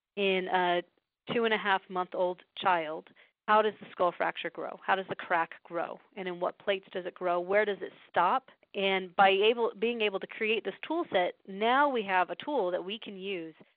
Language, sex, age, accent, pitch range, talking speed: English, female, 30-49, American, 180-220 Hz, 215 wpm